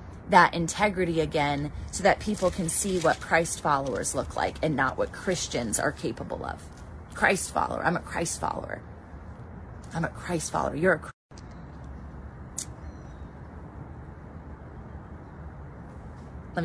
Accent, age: American, 30-49